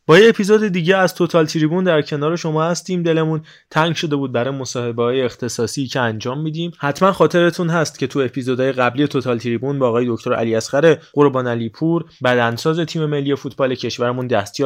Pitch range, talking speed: 130-160 Hz, 175 wpm